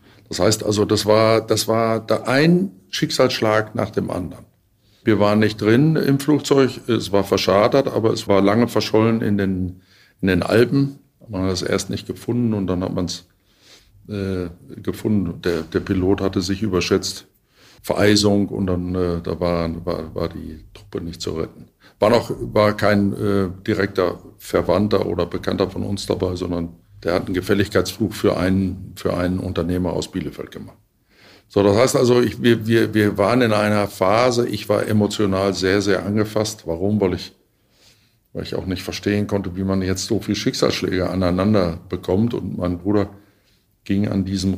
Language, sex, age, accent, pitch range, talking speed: German, male, 50-69, German, 95-105 Hz, 175 wpm